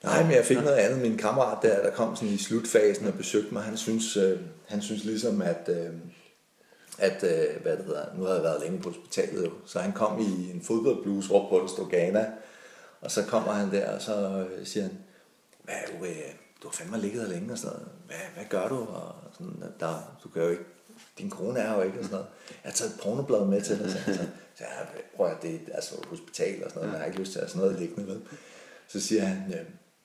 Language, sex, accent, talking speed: Danish, male, native, 240 wpm